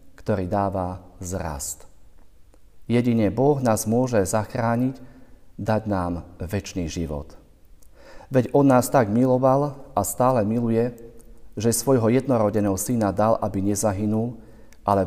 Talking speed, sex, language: 110 wpm, male, Slovak